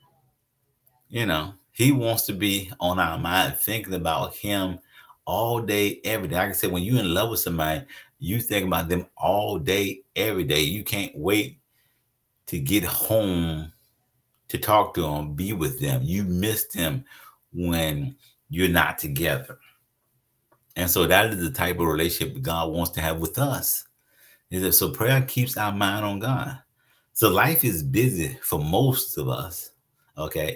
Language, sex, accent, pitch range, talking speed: English, male, American, 90-130 Hz, 165 wpm